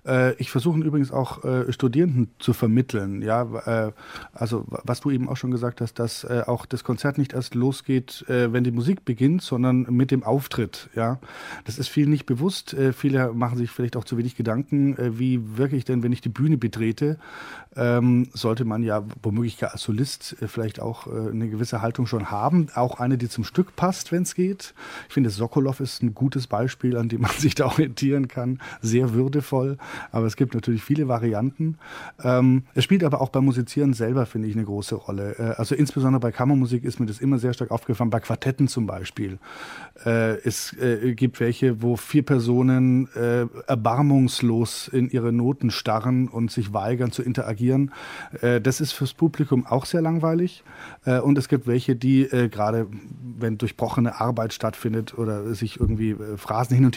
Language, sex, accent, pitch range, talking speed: German, male, German, 115-135 Hz, 180 wpm